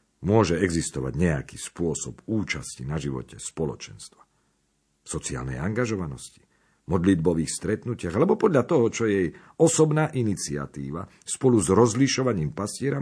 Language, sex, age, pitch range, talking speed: Slovak, male, 50-69, 80-125 Hz, 105 wpm